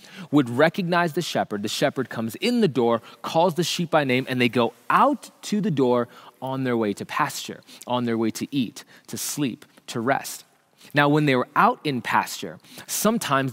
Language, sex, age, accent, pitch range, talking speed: English, male, 20-39, American, 125-180 Hz, 195 wpm